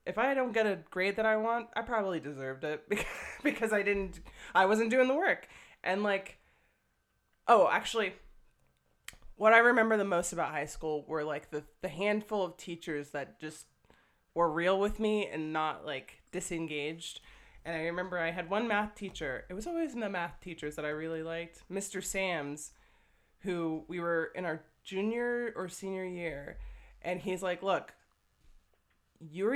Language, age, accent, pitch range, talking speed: English, 20-39, American, 160-205 Hz, 175 wpm